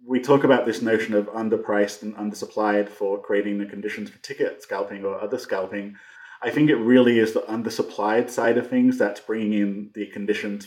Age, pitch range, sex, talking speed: 30-49, 105-140 Hz, male, 190 wpm